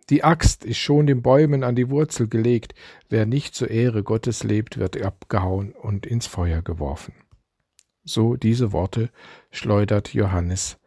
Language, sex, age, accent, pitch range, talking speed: German, male, 50-69, German, 105-140 Hz, 150 wpm